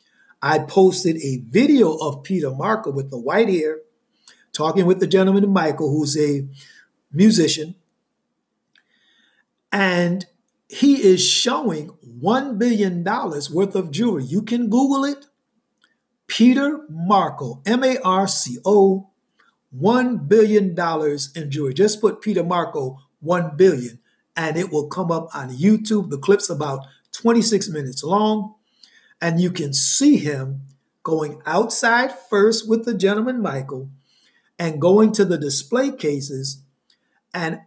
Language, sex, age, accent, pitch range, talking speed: English, male, 60-79, American, 150-210 Hz, 125 wpm